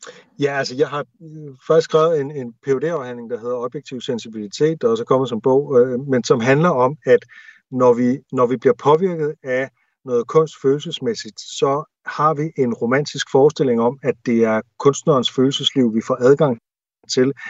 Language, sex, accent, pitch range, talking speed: Danish, male, native, 125-155 Hz, 180 wpm